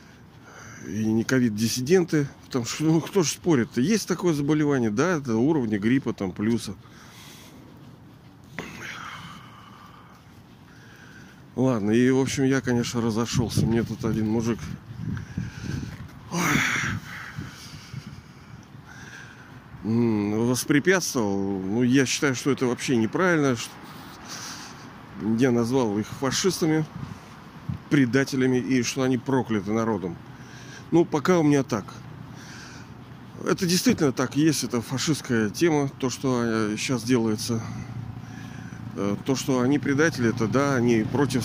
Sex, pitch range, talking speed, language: male, 115-145 Hz, 105 wpm, Russian